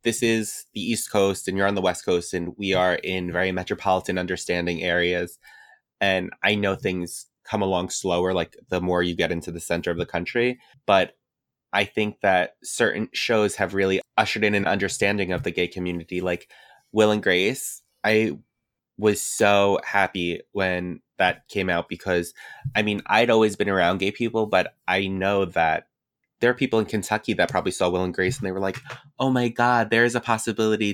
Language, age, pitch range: English, 20-39, 90-105 Hz